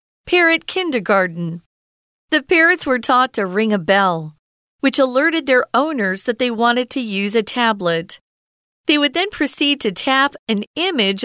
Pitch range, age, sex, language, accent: 195-285 Hz, 40-59, female, Chinese, American